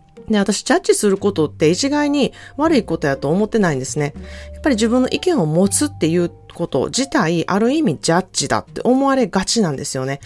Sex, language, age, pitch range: female, Japanese, 30-49, 155-235 Hz